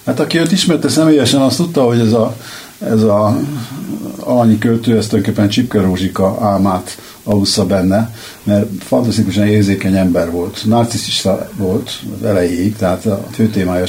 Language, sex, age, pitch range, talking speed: Hungarian, male, 60-79, 100-115 Hz, 145 wpm